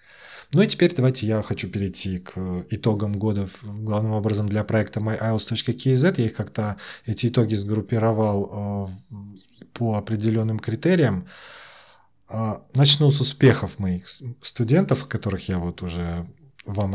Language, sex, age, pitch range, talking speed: Russian, male, 20-39, 105-130 Hz, 125 wpm